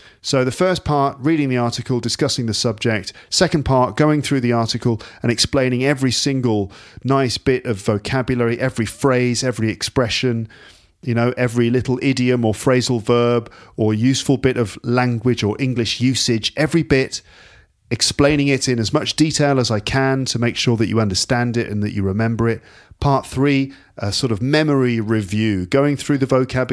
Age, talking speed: 40-59, 175 wpm